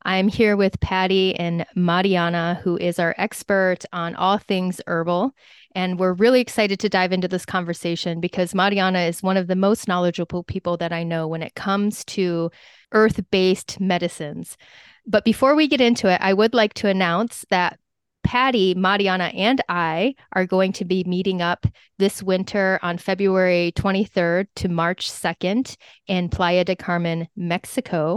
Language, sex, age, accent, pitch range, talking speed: English, female, 30-49, American, 180-205 Hz, 160 wpm